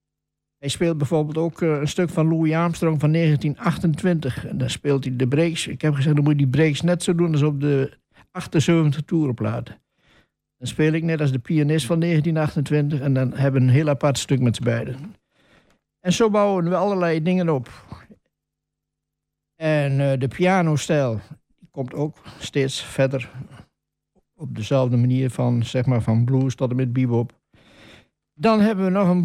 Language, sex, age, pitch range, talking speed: Dutch, male, 60-79, 130-165 Hz, 170 wpm